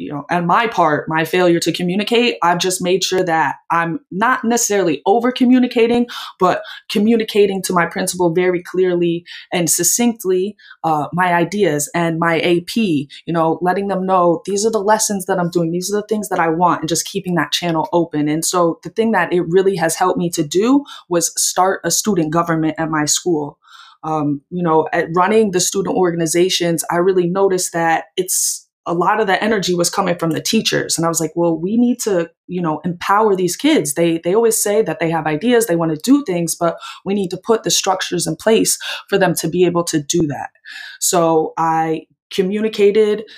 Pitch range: 165-200 Hz